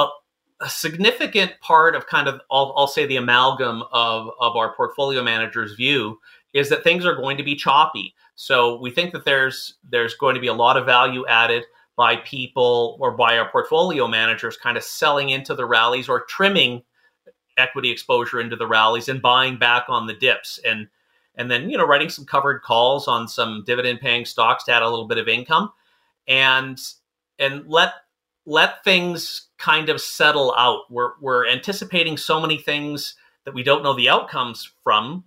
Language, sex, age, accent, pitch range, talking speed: English, male, 30-49, American, 125-165 Hz, 185 wpm